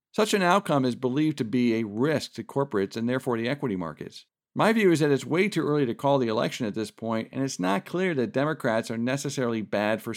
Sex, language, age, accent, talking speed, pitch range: male, English, 50-69, American, 240 wpm, 110-145 Hz